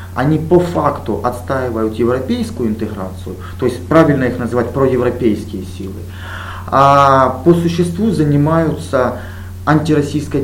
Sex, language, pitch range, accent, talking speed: male, Russian, 95-150 Hz, native, 105 wpm